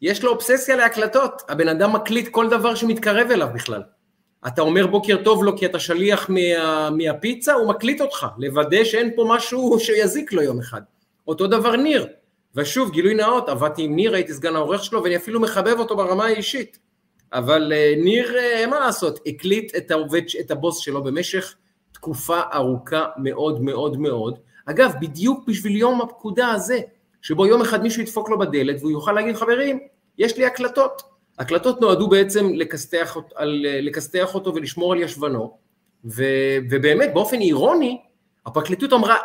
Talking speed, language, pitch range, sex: 160 wpm, Hebrew, 165-240 Hz, male